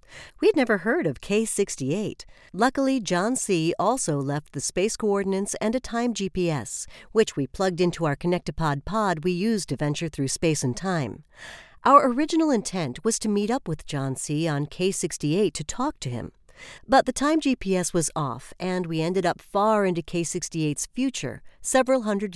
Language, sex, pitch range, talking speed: English, female, 150-210 Hz, 170 wpm